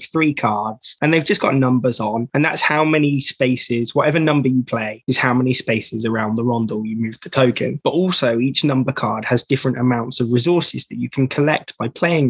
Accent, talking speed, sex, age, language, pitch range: British, 215 wpm, male, 20-39, English, 125-150 Hz